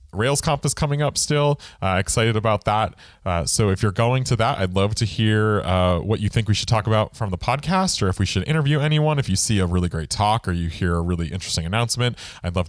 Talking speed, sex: 250 wpm, male